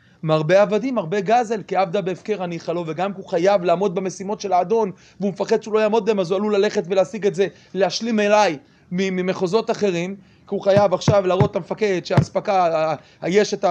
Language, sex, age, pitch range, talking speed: Hebrew, male, 30-49, 165-215 Hz, 185 wpm